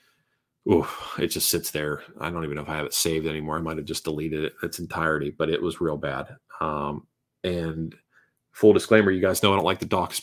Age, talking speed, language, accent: 30-49, 235 wpm, English, American